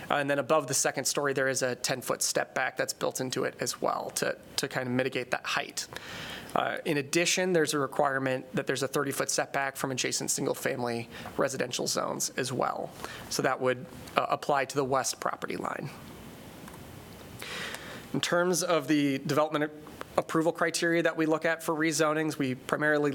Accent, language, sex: American, English, male